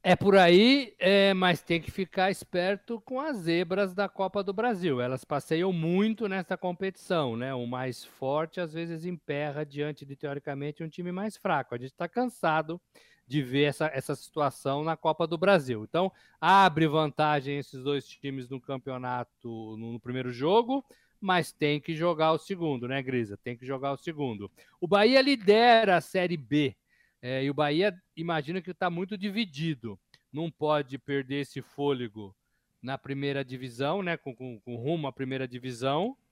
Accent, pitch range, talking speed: Brazilian, 135-175 Hz, 170 wpm